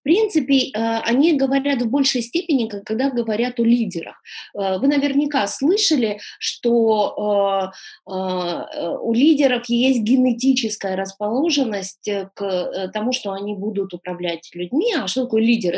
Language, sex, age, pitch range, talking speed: Russian, female, 20-39, 200-275 Hz, 120 wpm